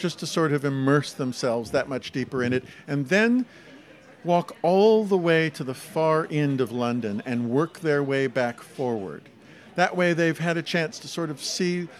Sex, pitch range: male, 130-160 Hz